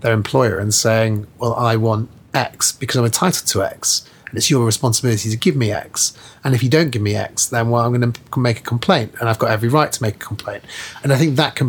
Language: English